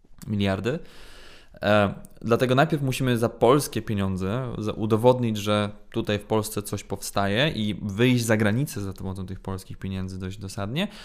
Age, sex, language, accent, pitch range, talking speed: 20-39, male, Polish, native, 100-120 Hz, 135 wpm